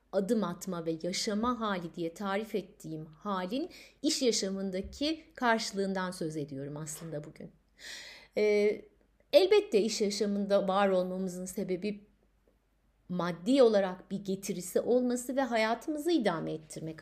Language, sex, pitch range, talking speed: Turkish, female, 185-240 Hz, 110 wpm